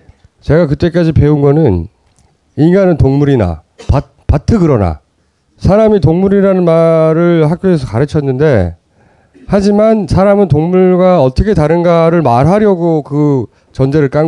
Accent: native